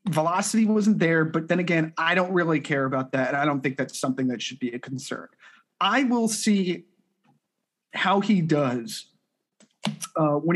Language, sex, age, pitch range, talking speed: English, male, 30-49, 145-190 Hz, 175 wpm